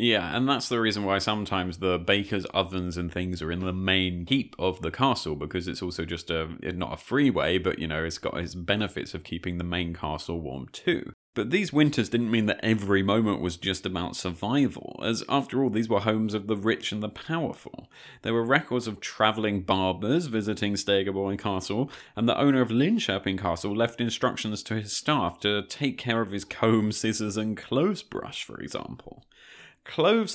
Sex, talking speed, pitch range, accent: male, 195 wpm, 95-120 Hz, British